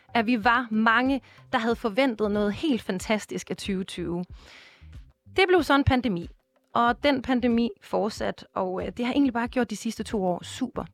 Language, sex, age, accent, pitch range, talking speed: Danish, female, 30-49, native, 185-250 Hz, 175 wpm